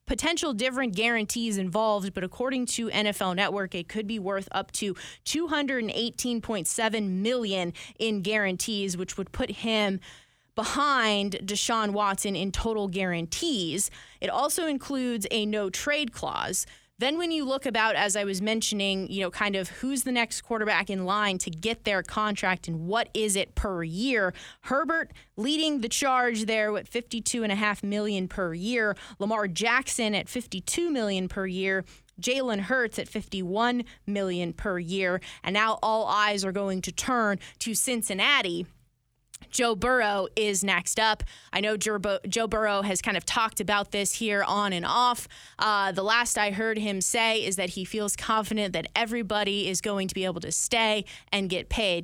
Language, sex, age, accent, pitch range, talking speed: English, female, 20-39, American, 190-230 Hz, 165 wpm